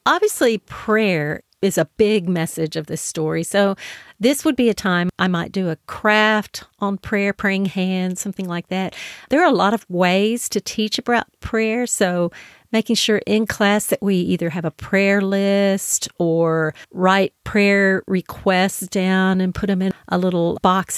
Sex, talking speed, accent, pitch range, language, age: female, 175 wpm, American, 175-215 Hz, English, 40-59